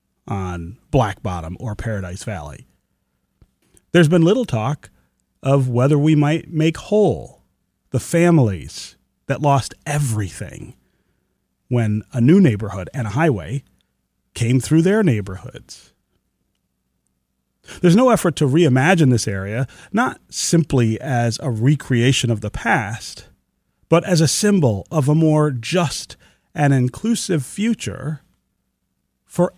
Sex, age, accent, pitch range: male, 40-59, American, 105-155 Hz